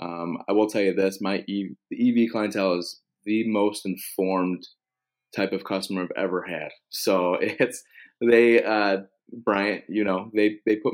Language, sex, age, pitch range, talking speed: English, male, 20-39, 90-100 Hz, 175 wpm